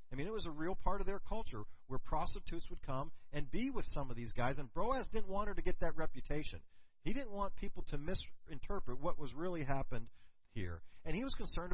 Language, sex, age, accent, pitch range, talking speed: English, male, 40-59, American, 110-175 Hz, 230 wpm